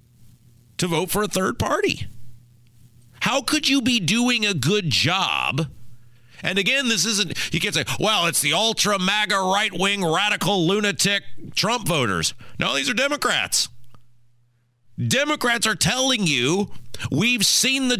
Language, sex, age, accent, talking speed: English, male, 40-59, American, 135 wpm